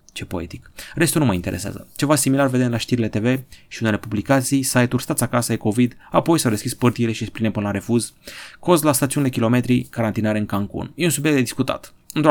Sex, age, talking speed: male, 30-49, 200 wpm